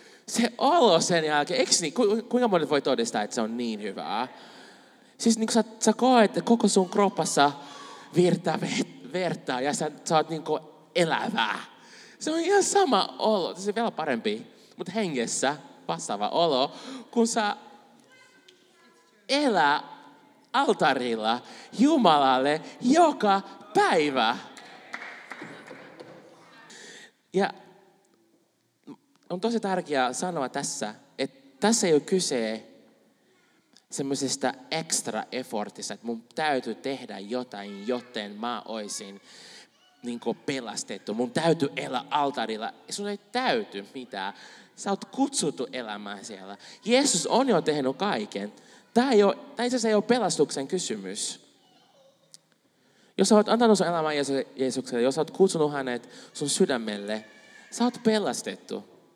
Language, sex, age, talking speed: Finnish, male, 30-49, 120 wpm